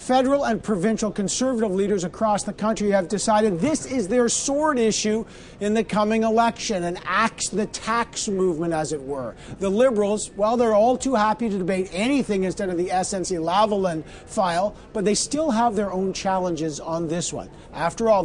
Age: 50-69